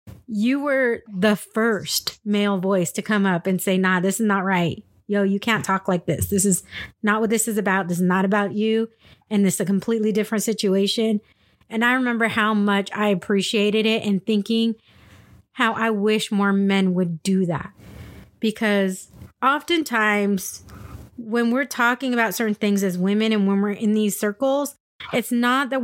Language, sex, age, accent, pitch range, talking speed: English, female, 30-49, American, 195-235 Hz, 180 wpm